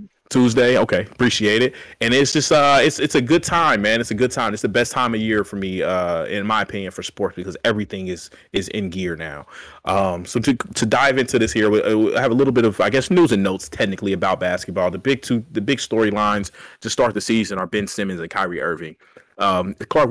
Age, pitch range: 30-49, 95-110 Hz